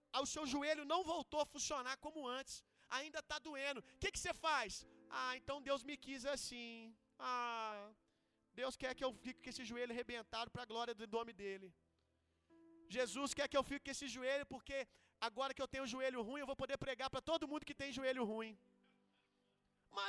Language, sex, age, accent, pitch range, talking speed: Gujarati, male, 30-49, Brazilian, 255-340 Hz, 195 wpm